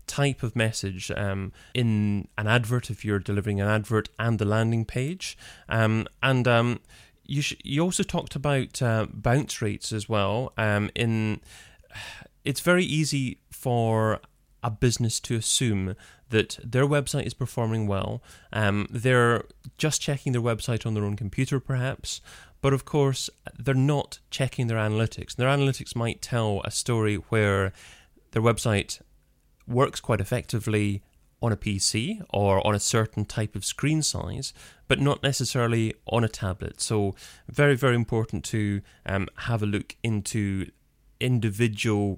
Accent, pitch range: British, 105-130 Hz